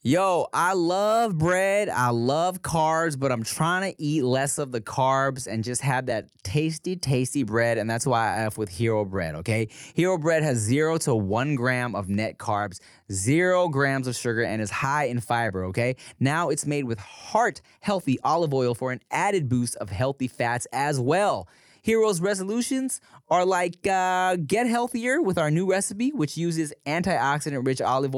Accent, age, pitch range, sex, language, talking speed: American, 20-39, 125-195 Hz, male, English, 180 wpm